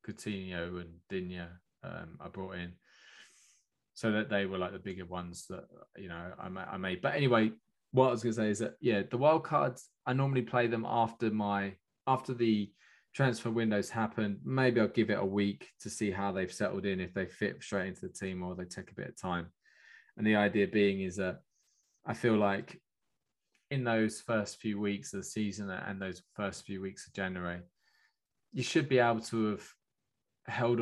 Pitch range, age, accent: 95-115 Hz, 20-39, British